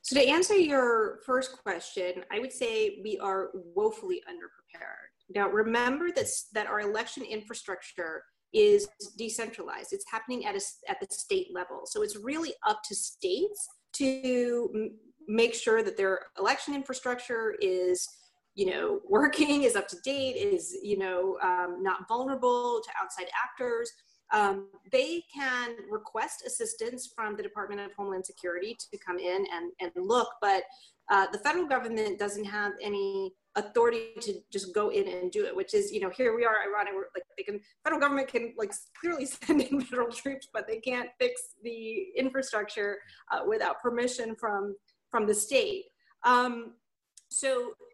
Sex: female